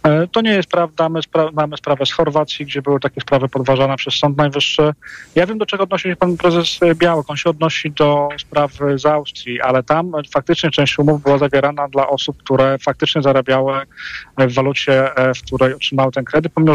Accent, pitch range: native, 130-150 Hz